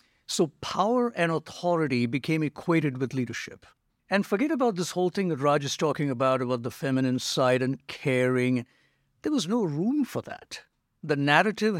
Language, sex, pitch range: English, male, 130-165 Hz